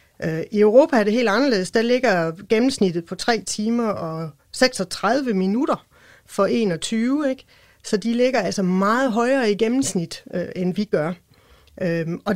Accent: native